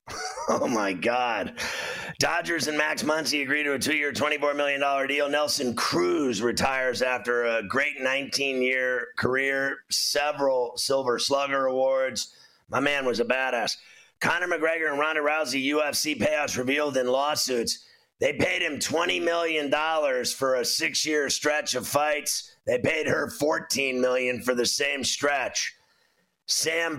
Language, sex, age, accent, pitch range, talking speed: English, male, 30-49, American, 135-160 Hz, 140 wpm